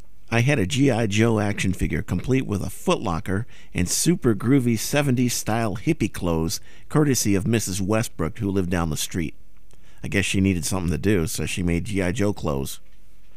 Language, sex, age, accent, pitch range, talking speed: English, male, 50-69, American, 85-120 Hz, 180 wpm